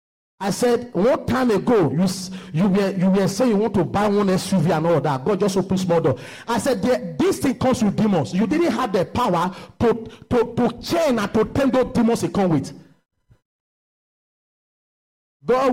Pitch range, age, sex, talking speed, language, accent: 160-230 Hz, 50-69, male, 195 wpm, English, Nigerian